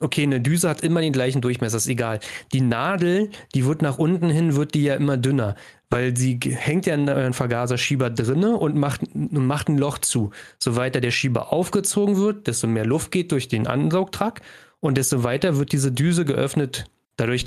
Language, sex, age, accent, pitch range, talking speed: German, male, 30-49, German, 125-155 Hz, 190 wpm